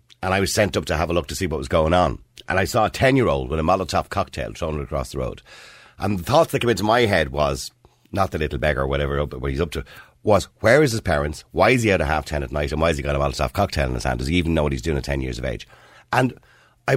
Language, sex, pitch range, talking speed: English, male, 75-115 Hz, 300 wpm